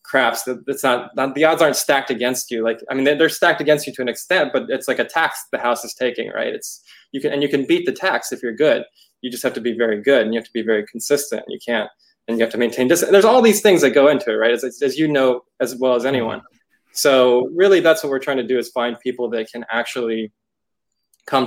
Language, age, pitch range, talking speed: English, 20-39, 115-135 Hz, 255 wpm